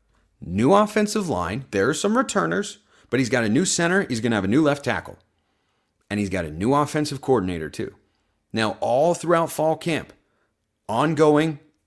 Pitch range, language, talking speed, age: 105-145 Hz, English, 170 wpm, 30-49